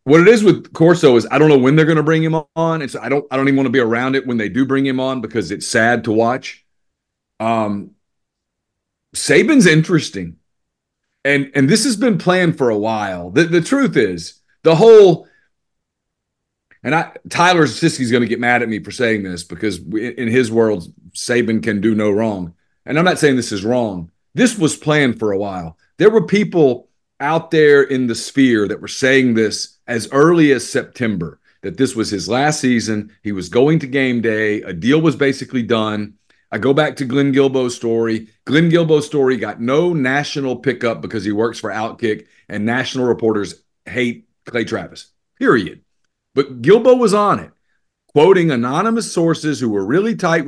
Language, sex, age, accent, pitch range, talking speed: English, male, 40-59, American, 110-150 Hz, 195 wpm